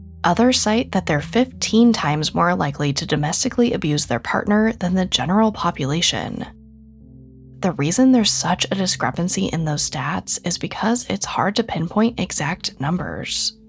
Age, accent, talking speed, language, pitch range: 10-29, American, 150 wpm, English, 140-220 Hz